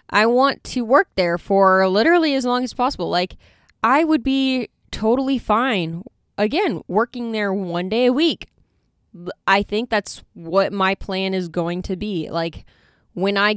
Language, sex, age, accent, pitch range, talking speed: English, female, 10-29, American, 175-225 Hz, 165 wpm